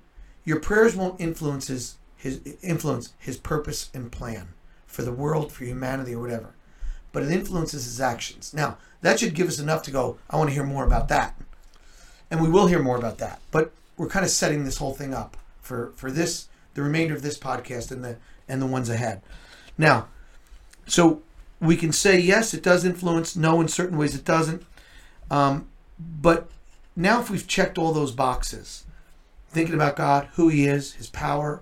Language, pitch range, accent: English, 125-165 Hz, American